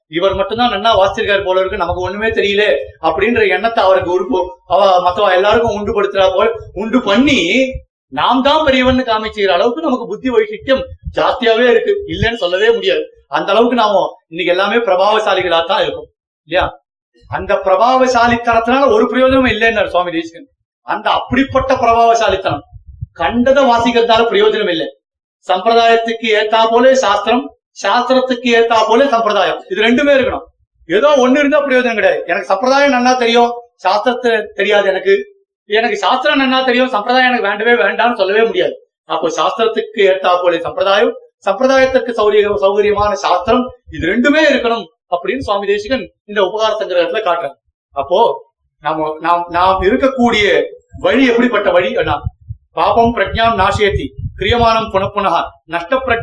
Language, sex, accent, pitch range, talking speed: Tamil, male, native, 195-260 Hz, 125 wpm